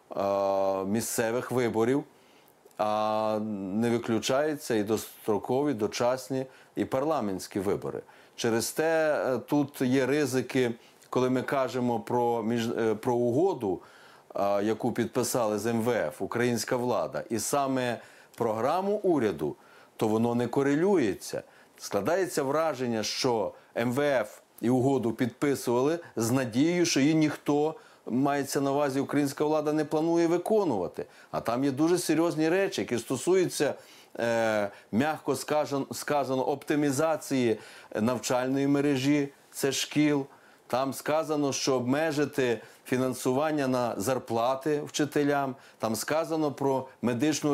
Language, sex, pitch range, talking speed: Ukrainian, male, 120-150 Hz, 105 wpm